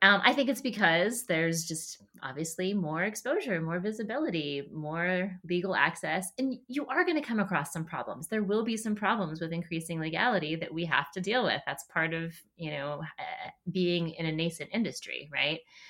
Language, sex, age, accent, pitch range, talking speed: English, female, 30-49, American, 155-205 Hz, 190 wpm